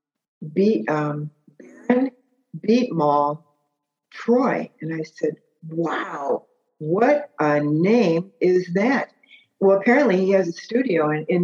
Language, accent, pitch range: English, American, 165-210 Hz